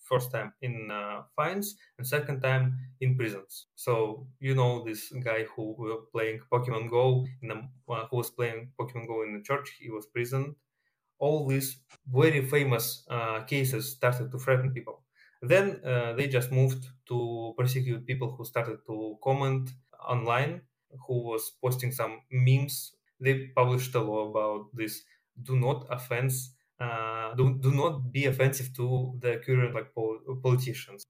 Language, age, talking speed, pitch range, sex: English, 20-39, 160 wpm, 120-135 Hz, male